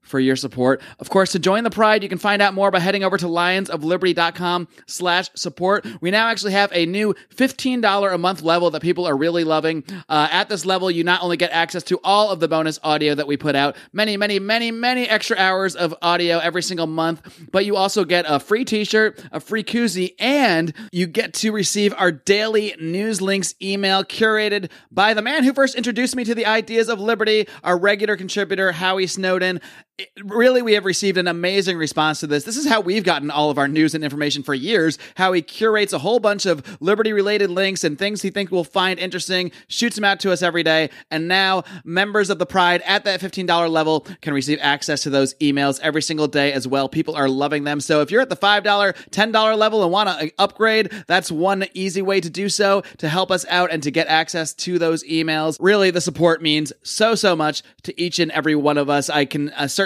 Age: 30-49